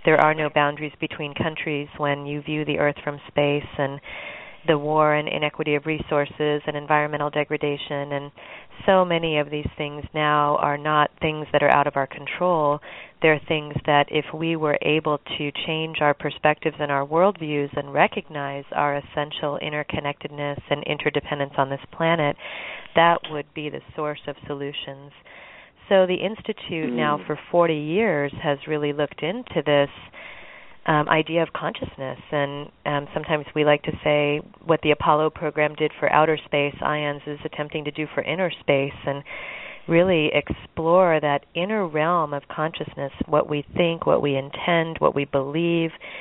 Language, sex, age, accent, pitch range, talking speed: English, female, 30-49, American, 145-160 Hz, 165 wpm